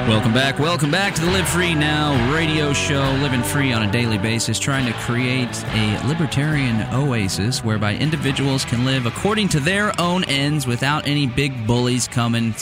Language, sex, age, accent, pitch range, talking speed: English, male, 30-49, American, 105-125 Hz, 175 wpm